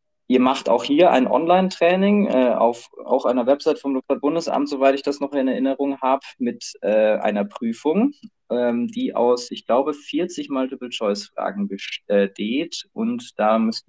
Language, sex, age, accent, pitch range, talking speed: German, male, 20-39, German, 115-185 Hz, 150 wpm